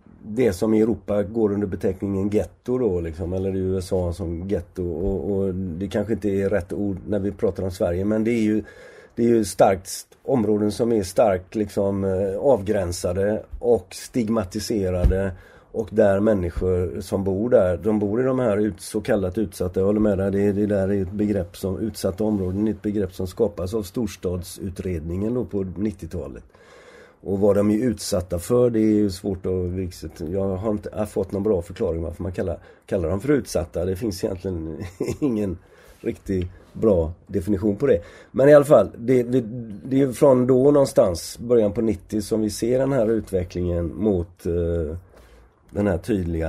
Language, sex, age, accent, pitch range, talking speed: Swedish, male, 40-59, native, 90-110 Hz, 180 wpm